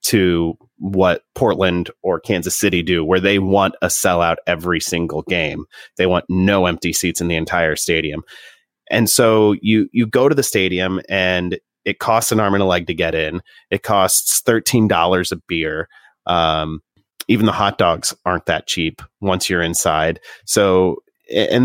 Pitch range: 90-105 Hz